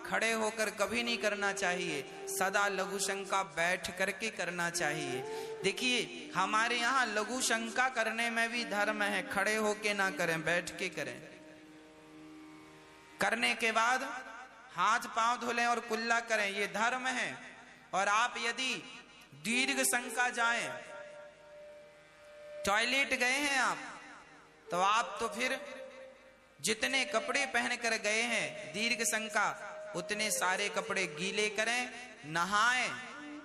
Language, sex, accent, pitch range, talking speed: Hindi, male, native, 200-260 Hz, 125 wpm